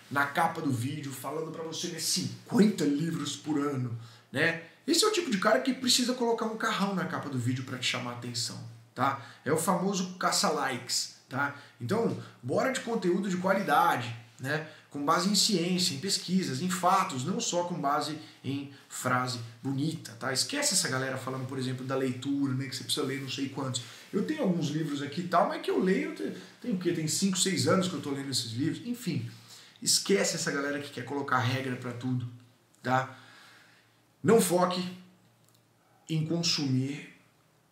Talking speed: 190 wpm